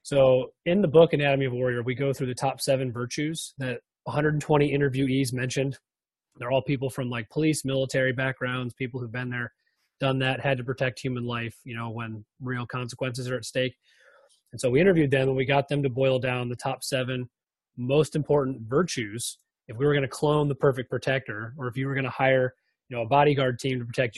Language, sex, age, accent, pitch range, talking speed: English, male, 30-49, American, 125-145 Hz, 215 wpm